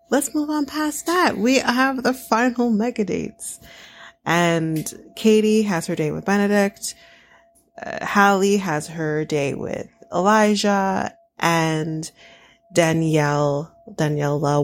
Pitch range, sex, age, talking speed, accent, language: 160-225 Hz, female, 30-49, 115 wpm, American, English